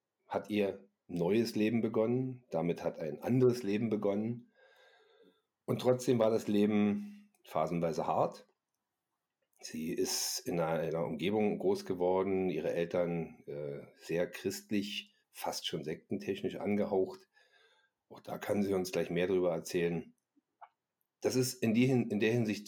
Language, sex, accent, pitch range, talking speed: German, male, German, 90-125 Hz, 125 wpm